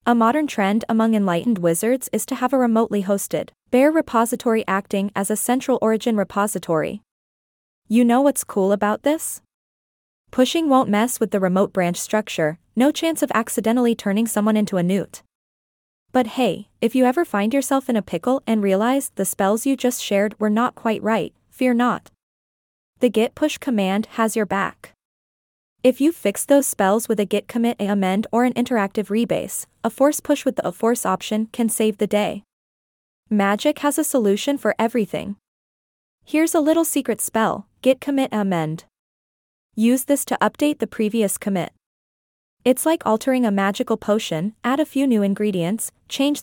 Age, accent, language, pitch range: 20-39, American, English, 205-255 Hz